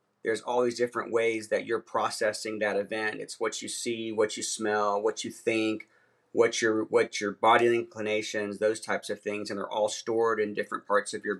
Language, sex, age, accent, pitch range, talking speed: English, male, 40-59, American, 105-125 Hz, 205 wpm